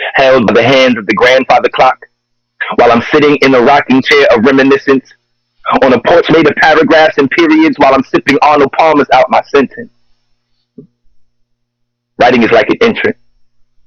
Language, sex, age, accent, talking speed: English, male, 30-49, American, 165 wpm